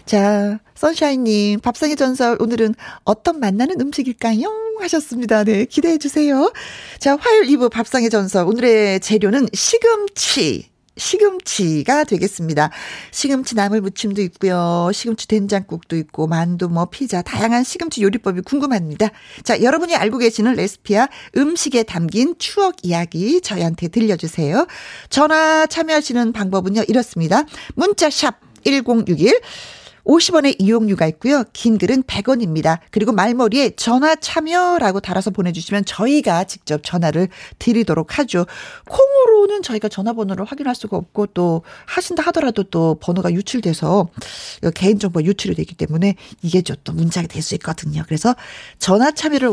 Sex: female